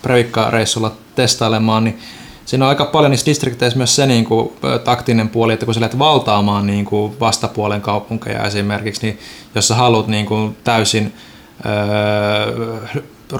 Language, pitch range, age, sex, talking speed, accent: Finnish, 105-120 Hz, 20-39, male, 150 wpm, native